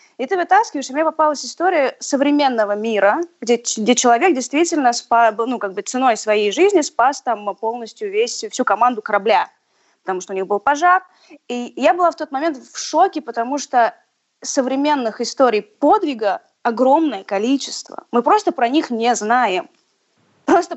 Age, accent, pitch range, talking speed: 20-39, native, 210-275 Hz, 160 wpm